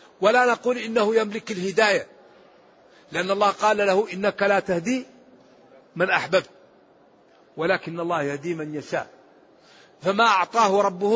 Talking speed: 120 wpm